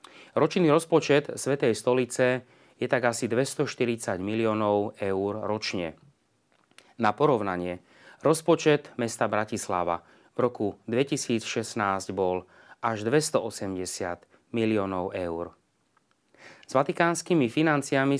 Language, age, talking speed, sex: Slovak, 30-49, 90 wpm, male